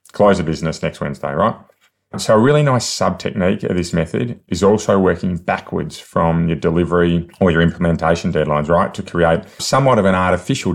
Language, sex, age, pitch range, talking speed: English, male, 30-49, 80-100 Hz, 185 wpm